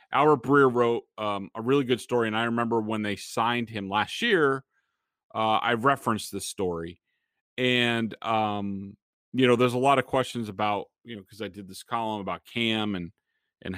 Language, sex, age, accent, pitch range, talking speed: English, male, 30-49, American, 100-125 Hz, 185 wpm